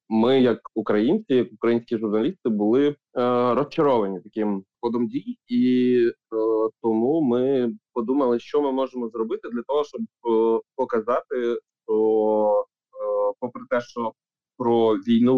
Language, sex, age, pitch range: Ukrainian, male, 20-39, 105-120 Hz